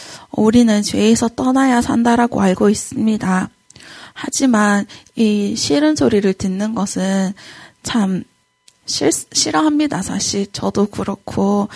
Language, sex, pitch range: Korean, female, 200-240 Hz